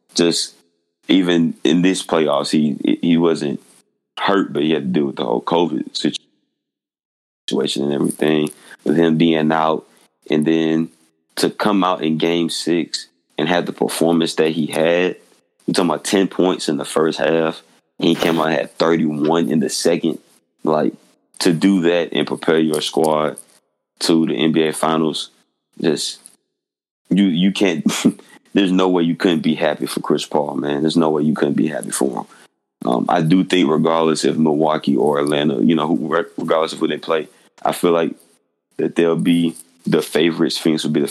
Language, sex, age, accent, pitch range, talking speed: English, male, 30-49, American, 75-85 Hz, 180 wpm